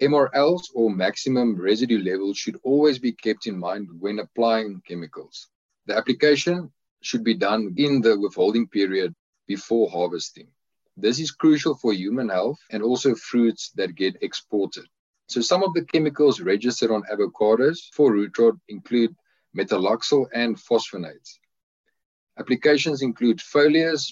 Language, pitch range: English, 105-150 Hz